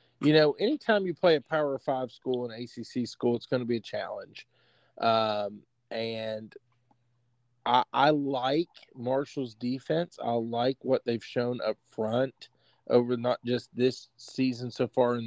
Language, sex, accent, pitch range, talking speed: English, male, American, 120-140 Hz, 160 wpm